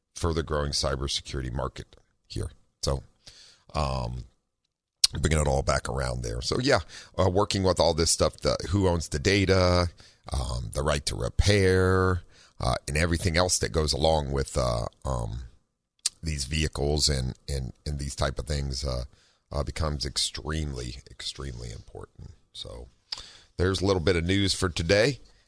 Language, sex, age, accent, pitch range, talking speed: English, male, 40-59, American, 70-90 Hz, 155 wpm